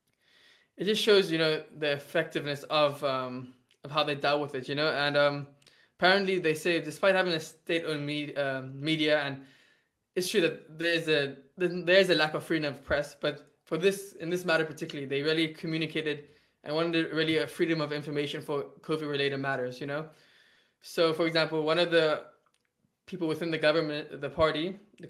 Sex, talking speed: male, 185 wpm